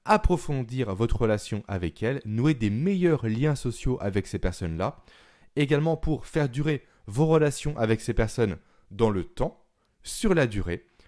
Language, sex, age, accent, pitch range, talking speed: French, male, 20-39, French, 105-150 Hz, 150 wpm